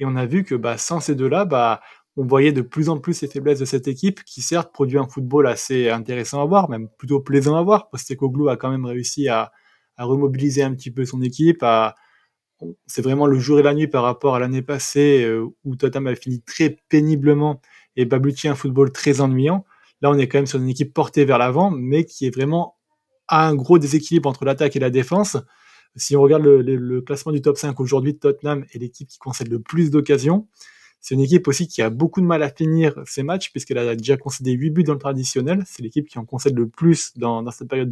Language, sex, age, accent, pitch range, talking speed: French, male, 20-39, French, 130-150 Hz, 240 wpm